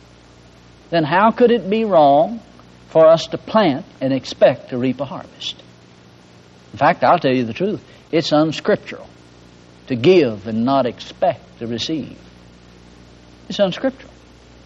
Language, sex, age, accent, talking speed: English, male, 60-79, American, 140 wpm